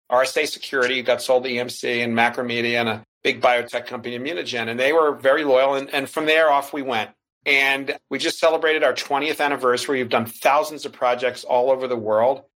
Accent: American